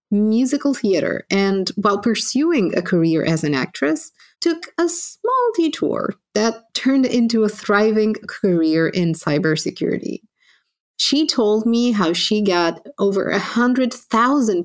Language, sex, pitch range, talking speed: English, female, 180-240 Hz, 125 wpm